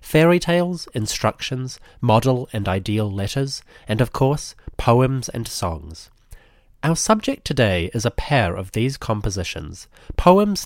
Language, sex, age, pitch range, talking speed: English, male, 30-49, 95-130 Hz, 130 wpm